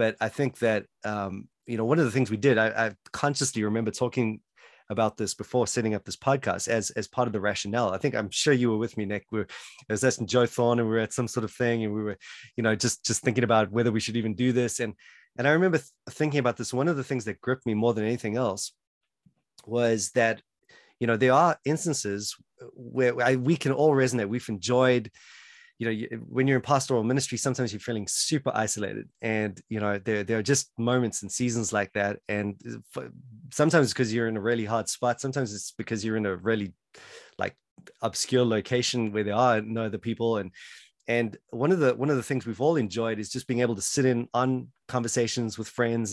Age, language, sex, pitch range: 30-49, English, male, 110-130 Hz